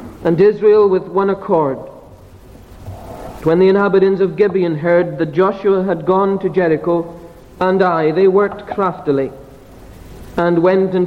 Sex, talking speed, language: male, 135 wpm, English